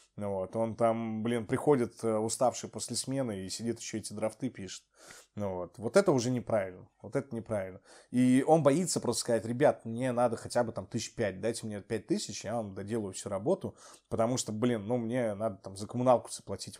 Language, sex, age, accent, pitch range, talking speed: Russian, male, 20-39, native, 105-135 Hz, 195 wpm